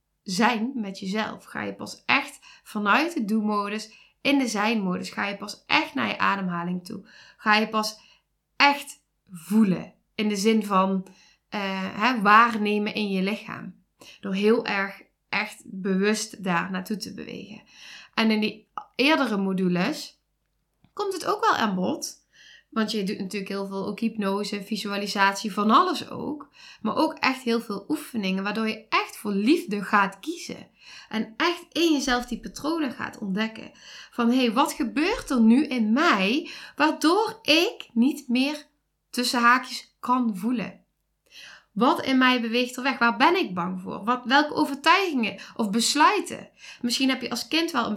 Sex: female